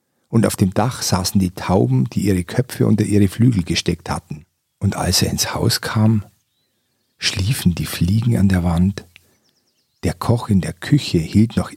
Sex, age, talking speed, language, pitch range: male, 50-69, 175 wpm, German, 90-115 Hz